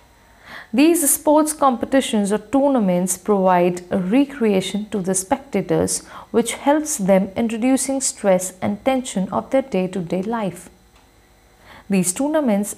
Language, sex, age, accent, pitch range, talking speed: English, female, 50-69, Indian, 190-270 Hz, 115 wpm